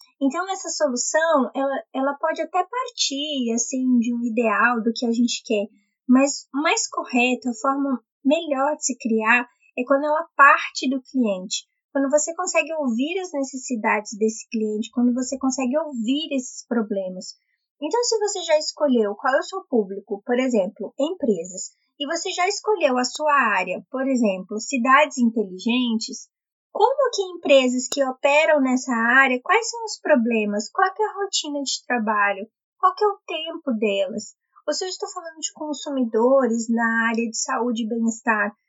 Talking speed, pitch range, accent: 165 wpm, 235-310 Hz, Brazilian